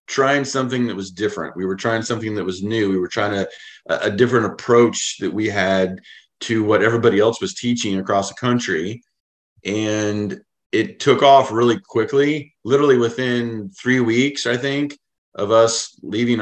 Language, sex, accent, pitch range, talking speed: English, male, American, 100-120 Hz, 170 wpm